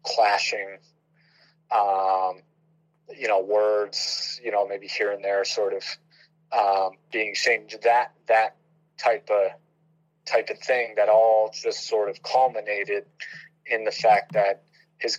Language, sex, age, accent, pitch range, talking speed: English, male, 30-49, American, 105-160 Hz, 135 wpm